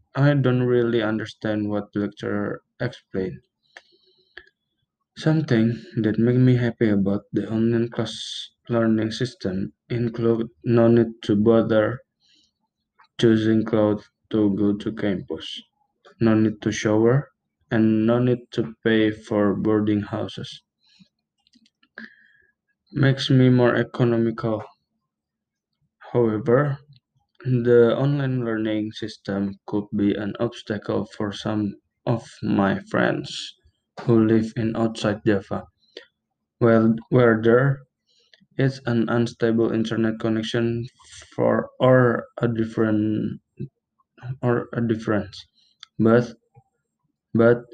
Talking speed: 105 wpm